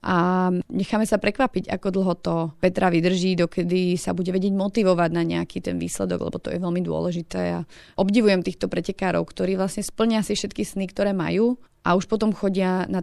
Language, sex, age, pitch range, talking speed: Slovak, female, 30-49, 170-195 Hz, 190 wpm